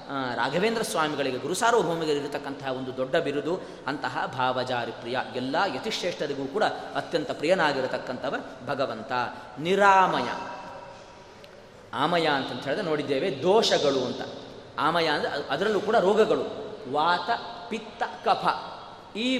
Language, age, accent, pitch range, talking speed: Kannada, 30-49, native, 135-195 Hz, 100 wpm